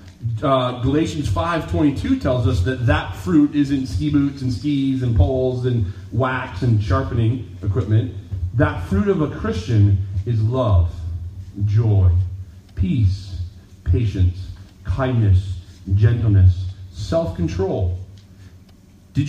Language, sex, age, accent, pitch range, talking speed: English, male, 30-49, American, 95-115 Hz, 115 wpm